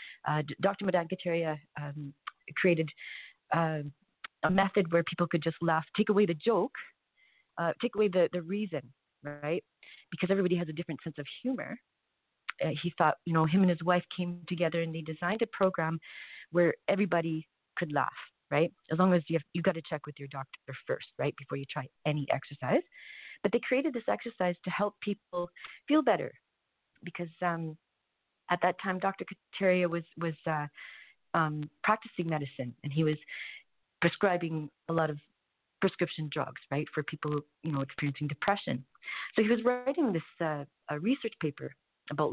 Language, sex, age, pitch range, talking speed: English, female, 40-59, 155-195 Hz, 170 wpm